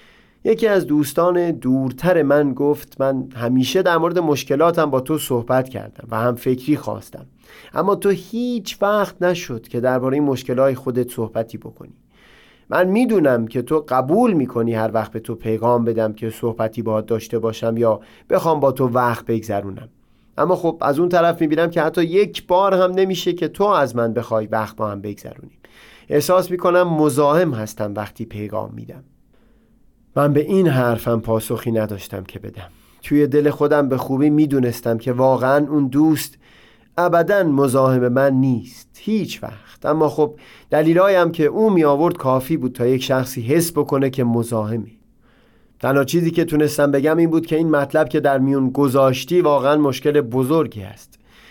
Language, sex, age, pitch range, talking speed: Persian, male, 30-49, 115-160 Hz, 165 wpm